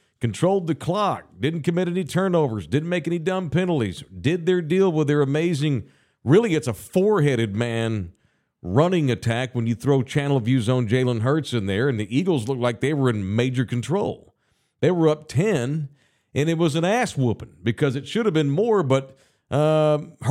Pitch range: 120-165 Hz